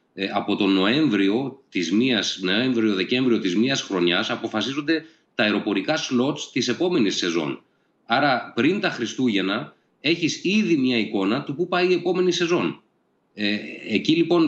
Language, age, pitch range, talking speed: Greek, 30-49, 105-160 Hz, 120 wpm